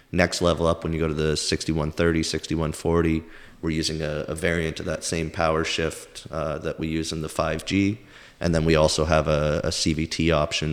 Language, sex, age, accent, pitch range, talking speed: English, male, 30-49, American, 75-85 Hz, 200 wpm